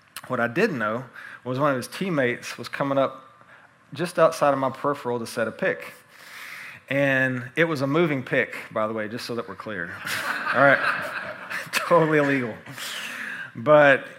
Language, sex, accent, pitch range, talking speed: English, male, American, 130-155 Hz, 170 wpm